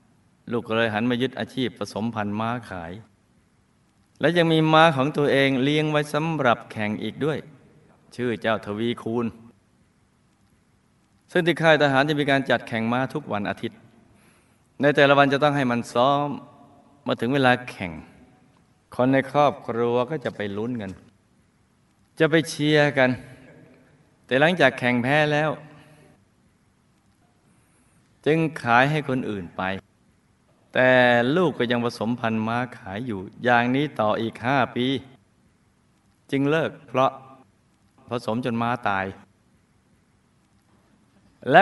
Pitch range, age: 115-150 Hz, 20-39